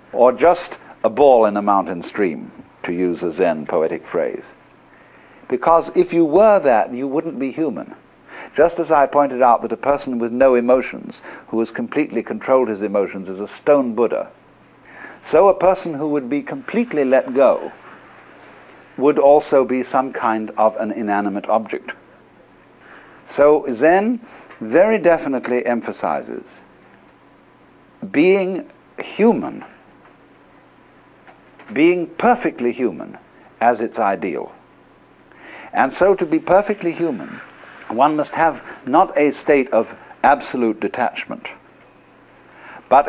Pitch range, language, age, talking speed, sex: 120-170 Hz, English, 50-69, 125 wpm, male